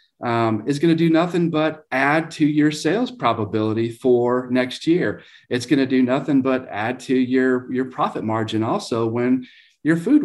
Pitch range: 115-145 Hz